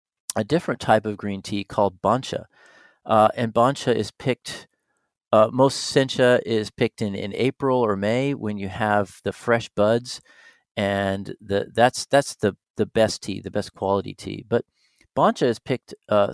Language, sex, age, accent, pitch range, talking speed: English, male, 40-59, American, 105-125 Hz, 170 wpm